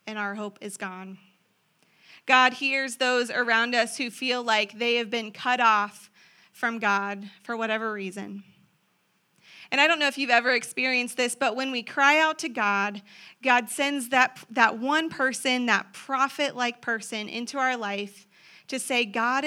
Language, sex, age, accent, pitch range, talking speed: English, female, 30-49, American, 205-250 Hz, 165 wpm